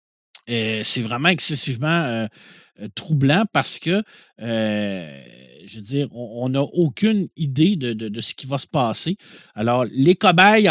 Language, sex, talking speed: French, male, 155 wpm